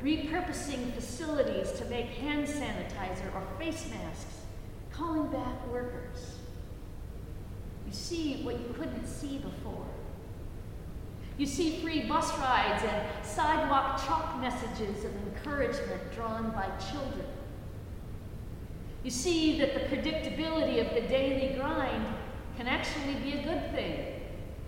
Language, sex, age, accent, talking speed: English, female, 50-69, American, 115 wpm